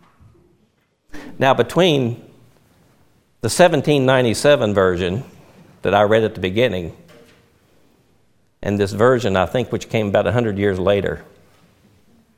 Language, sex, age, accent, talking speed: English, male, 60-79, American, 105 wpm